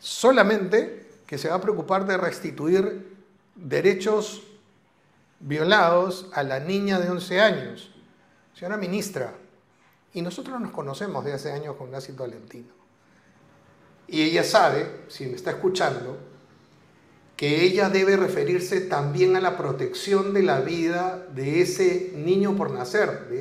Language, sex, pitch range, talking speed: Spanish, male, 175-220 Hz, 135 wpm